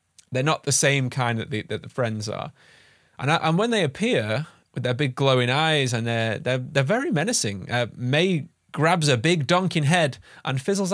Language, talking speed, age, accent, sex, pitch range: English, 205 wpm, 20-39, British, male, 110-145 Hz